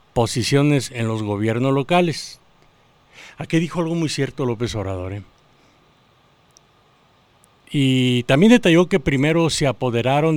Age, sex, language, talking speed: 50-69, male, Spanish, 110 wpm